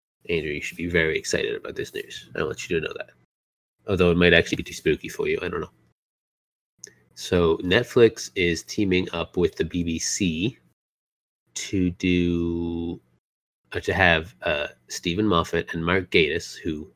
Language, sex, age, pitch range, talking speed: English, male, 30-49, 80-95 Hz, 165 wpm